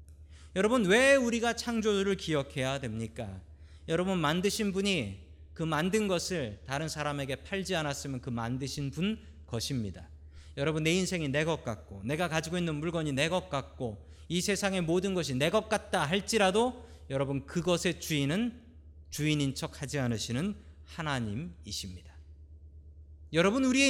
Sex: male